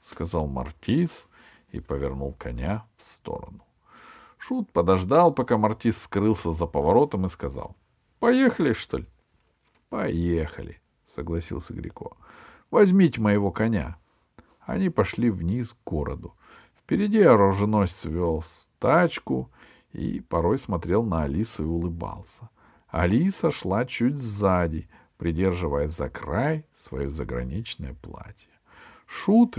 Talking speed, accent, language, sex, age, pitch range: 105 wpm, native, Russian, male, 50-69, 85-125 Hz